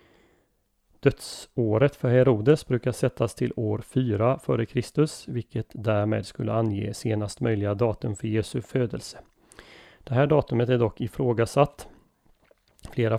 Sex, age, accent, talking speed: male, 30-49, native, 125 wpm